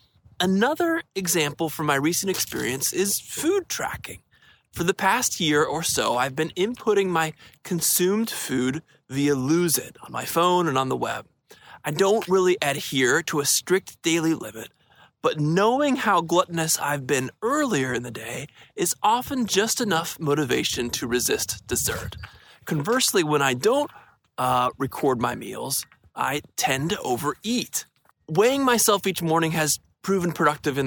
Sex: male